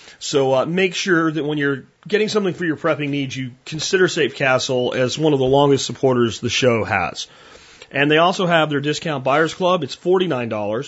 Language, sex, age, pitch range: English, male, 40-59, 125-155 Hz